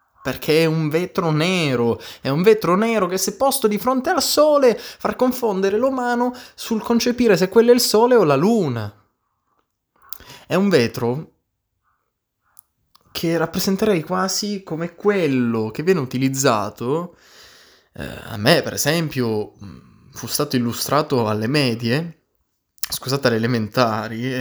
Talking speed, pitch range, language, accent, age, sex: 130 wpm, 120-195 Hz, Italian, native, 20-39, male